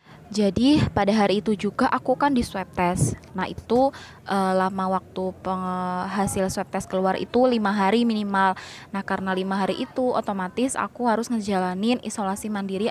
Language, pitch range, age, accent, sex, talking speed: Indonesian, 185-220 Hz, 20-39, native, female, 160 wpm